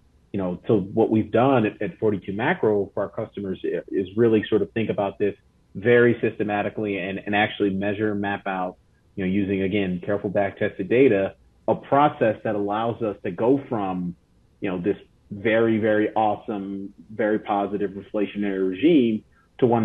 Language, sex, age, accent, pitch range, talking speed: English, male, 30-49, American, 95-110 Hz, 170 wpm